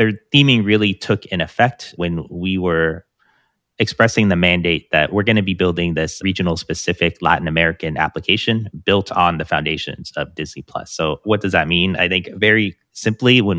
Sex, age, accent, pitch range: male, 30-49, American, 85-100 Hz